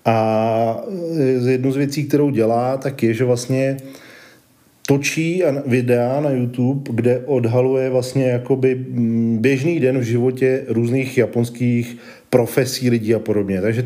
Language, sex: Czech, male